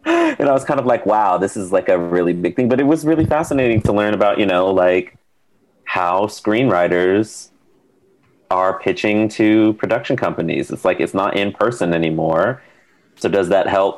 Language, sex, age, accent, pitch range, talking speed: English, male, 30-49, American, 85-100 Hz, 185 wpm